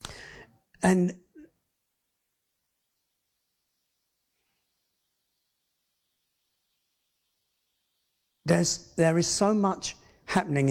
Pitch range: 130-185 Hz